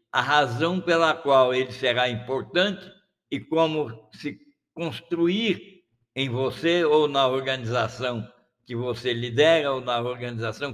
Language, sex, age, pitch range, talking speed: Portuguese, male, 60-79, 125-165 Hz, 125 wpm